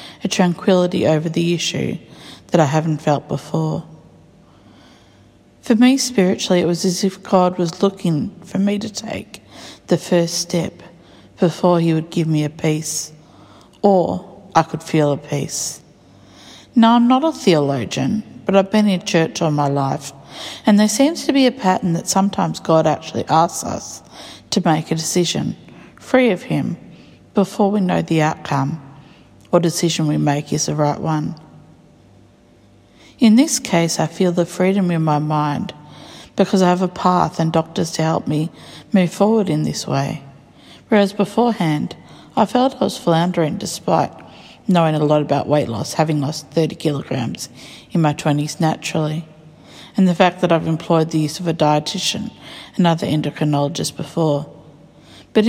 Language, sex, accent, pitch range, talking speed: English, female, Australian, 155-195 Hz, 160 wpm